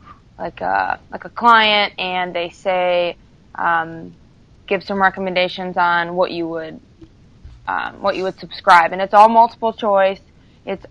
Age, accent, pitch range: 20-39, American, 180-205 Hz